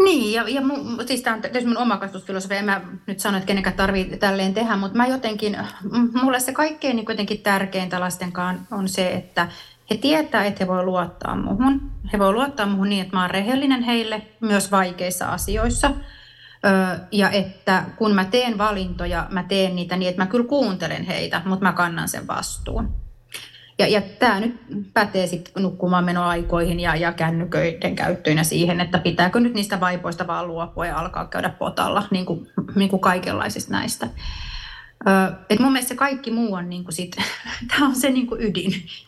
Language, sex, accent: Finnish, female, native